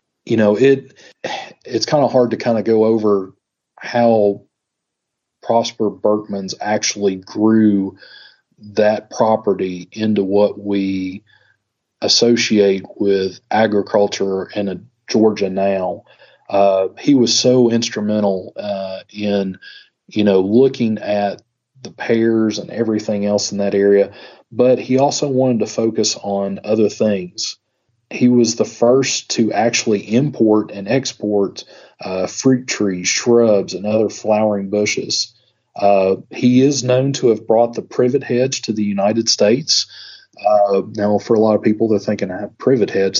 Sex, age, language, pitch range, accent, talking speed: male, 40-59, English, 100-115 Hz, American, 140 wpm